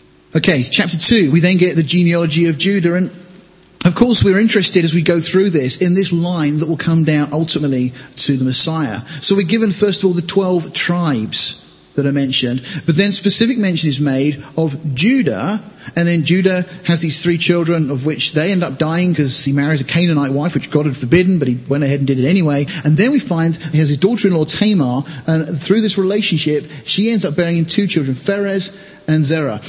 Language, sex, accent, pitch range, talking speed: English, male, British, 140-175 Hz, 210 wpm